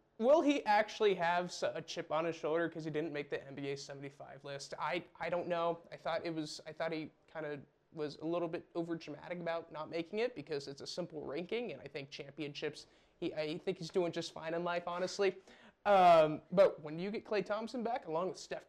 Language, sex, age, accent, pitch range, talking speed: English, male, 20-39, American, 155-205 Hz, 225 wpm